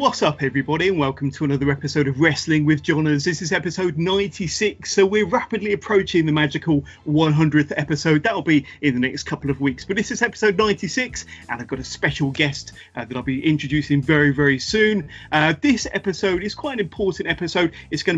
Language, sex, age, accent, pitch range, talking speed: English, male, 30-49, British, 145-175 Hz, 200 wpm